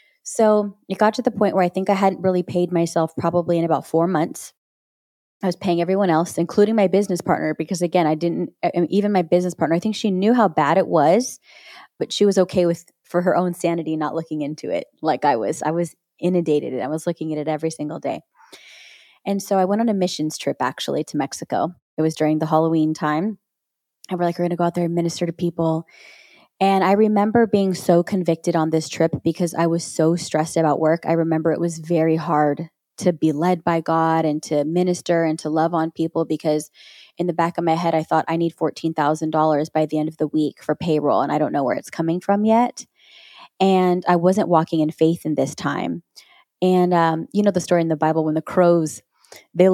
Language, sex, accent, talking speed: English, female, American, 225 wpm